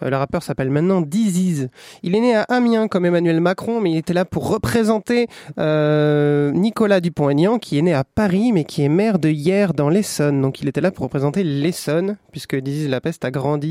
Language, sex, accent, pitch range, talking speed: French, male, French, 140-195 Hz, 205 wpm